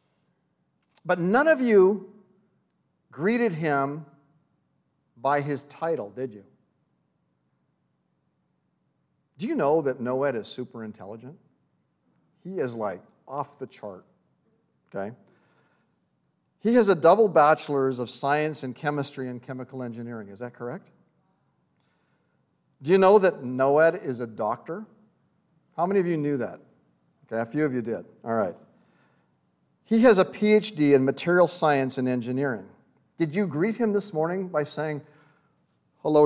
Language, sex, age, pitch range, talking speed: English, male, 50-69, 130-190 Hz, 135 wpm